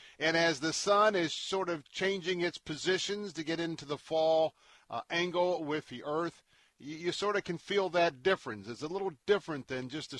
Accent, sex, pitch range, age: American, male, 130-165 Hz, 50-69